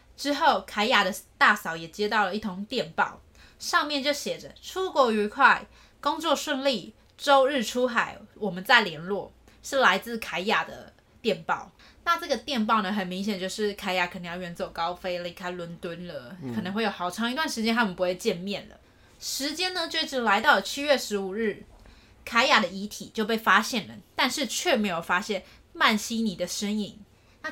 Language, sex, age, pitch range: Chinese, female, 20-39, 185-250 Hz